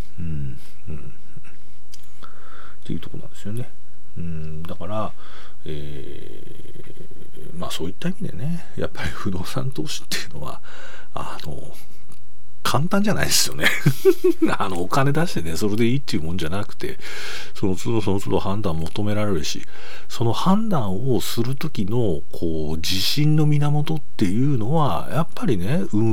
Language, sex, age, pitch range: Japanese, male, 40-59, 90-120 Hz